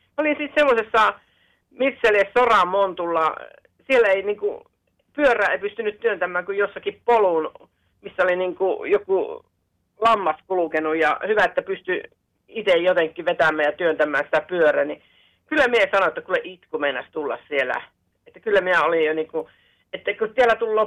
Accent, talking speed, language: native, 145 wpm, Finnish